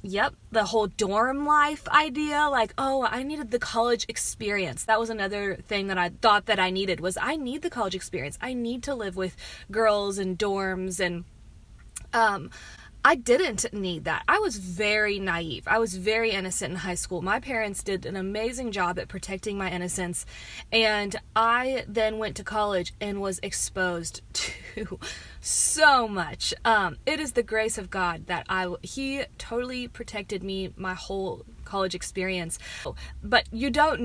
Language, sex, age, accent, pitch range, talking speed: English, female, 20-39, American, 185-245 Hz, 170 wpm